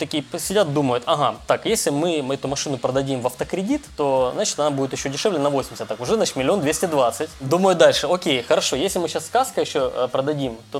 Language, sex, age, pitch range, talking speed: Russian, male, 20-39, 130-175 Hz, 210 wpm